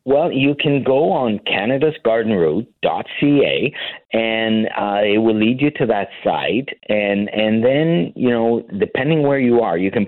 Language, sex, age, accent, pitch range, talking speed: English, male, 50-69, American, 95-115 Hz, 165 wpm